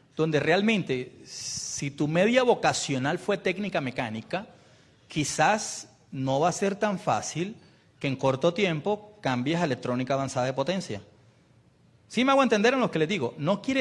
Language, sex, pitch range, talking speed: Spanish, male, 130-195 Hz, 165 wpm